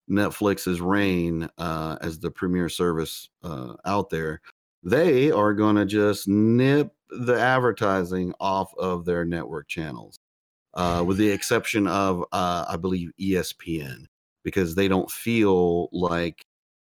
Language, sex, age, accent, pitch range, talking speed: English, male, 40-59, American, 85-105 Hz, 130 wpm